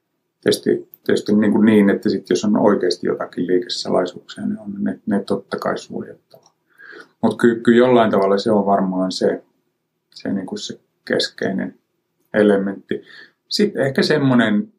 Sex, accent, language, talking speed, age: male, native, Finnish, 140 wpm, 30-49